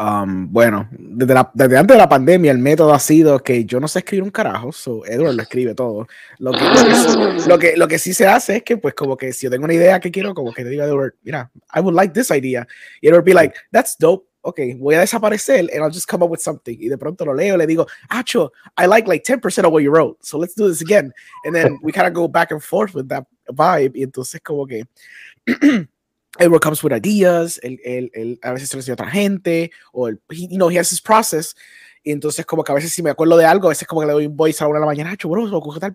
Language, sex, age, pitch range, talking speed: Spanish, male, 20-39, 140-185 Hz, 270 wpm